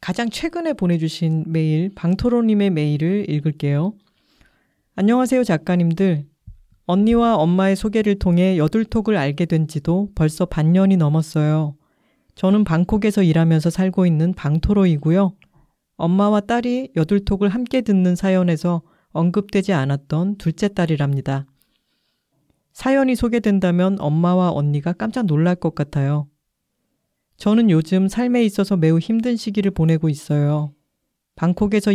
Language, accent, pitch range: Korean, native, 160-210 Hz